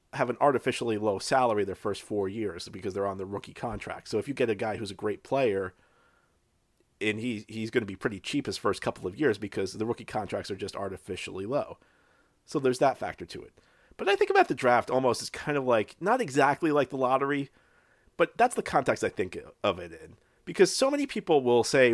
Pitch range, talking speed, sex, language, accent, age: 110-145 Hz, 225 wpm, male, English, American, 40-59